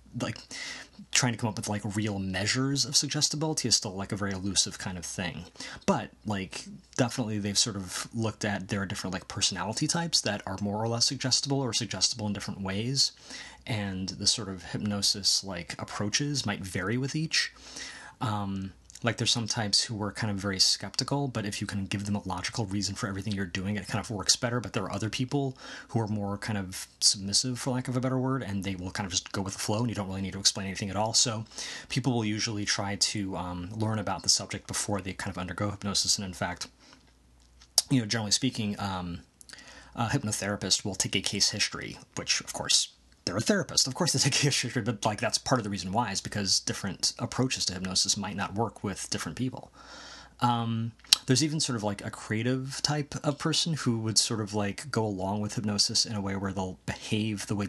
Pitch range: 100-125 Hz